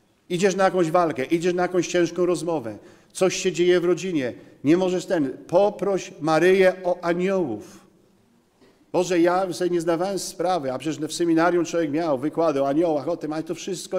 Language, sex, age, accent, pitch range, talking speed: Polish, male, 50-69, native, 150-185 Hz, 175 wpm